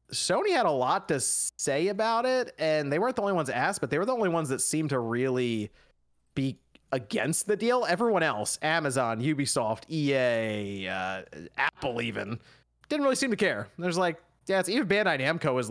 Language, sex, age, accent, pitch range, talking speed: English, male, 30-49, American, 120-160 Hz, 190 wpm